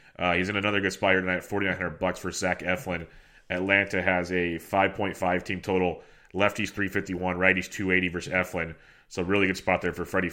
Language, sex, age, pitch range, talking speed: English, male, 30-49, 95-105 Hz, 180 wpm